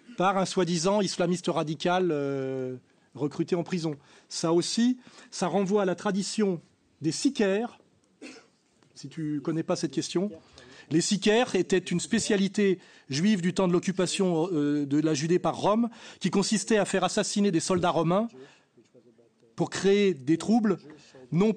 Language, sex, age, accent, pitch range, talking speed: French, male, 30-49, French, 160-200 Hz, 145 wpm